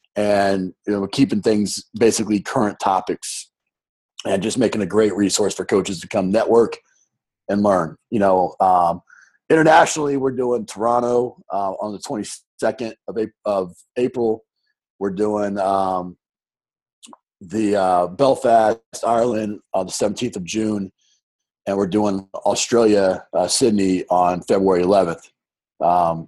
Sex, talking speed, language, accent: male, 130 wpm, English, American